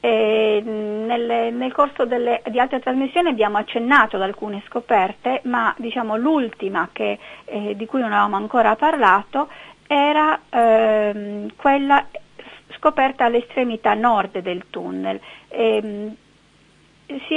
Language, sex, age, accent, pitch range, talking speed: Italian, female, 40-59, native, 210-275 Hz, 115 wpm